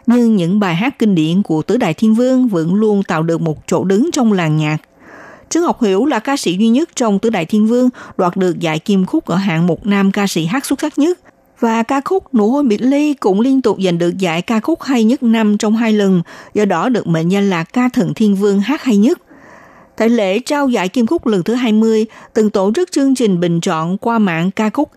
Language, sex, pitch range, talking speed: Vietnamese, female, 185-250 Hz, 250 wpm